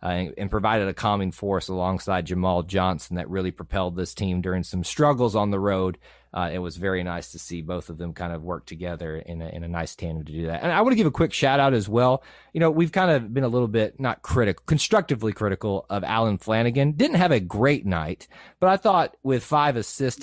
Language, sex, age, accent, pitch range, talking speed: English, male, 30-49, American, 90-125 Hz, 245 wpm